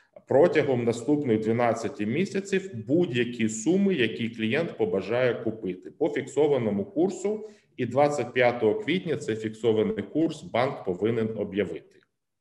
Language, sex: Ukrainian, male